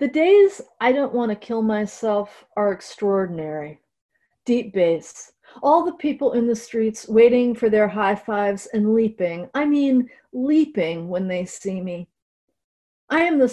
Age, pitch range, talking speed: 40-59, 210-275 Hz, 155 wpm